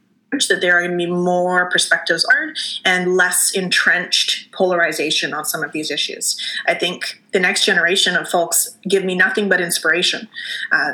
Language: English